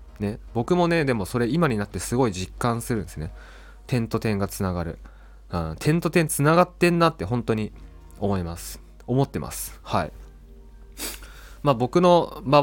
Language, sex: Japanese, male